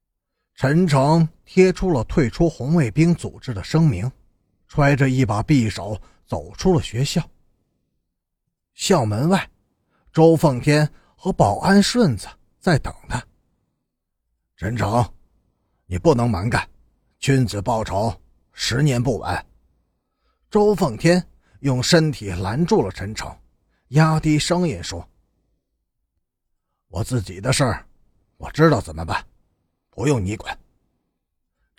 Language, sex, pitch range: Chinese, male, 95-160 Hz